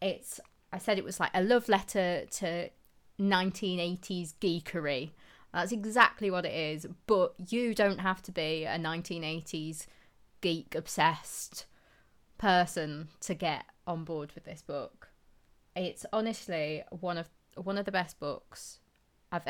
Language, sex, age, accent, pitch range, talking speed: English, female, 20-39, British, 165-195 Hz, 140 wpm